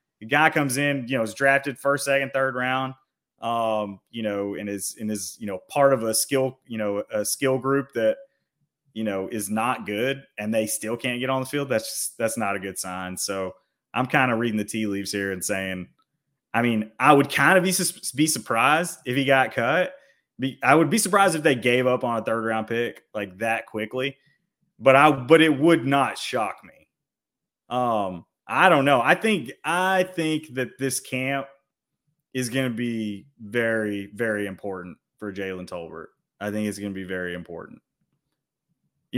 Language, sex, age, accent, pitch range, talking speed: English, male, 30-49, American, 110-160 Hz, 195 wpm